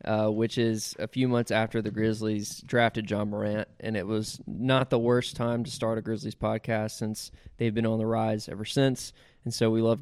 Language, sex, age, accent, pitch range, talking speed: English, male, 20-39, American, 110-130 Hz, 215 wpm